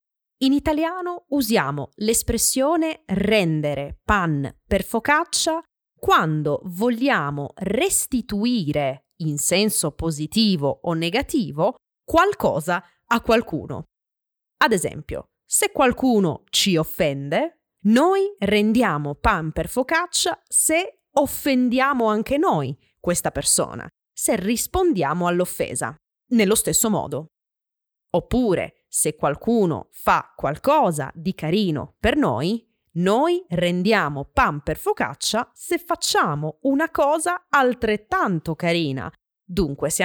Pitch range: 170-280 Hz